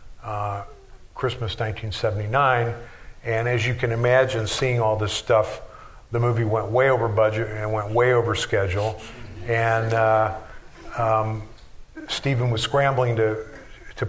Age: 50-69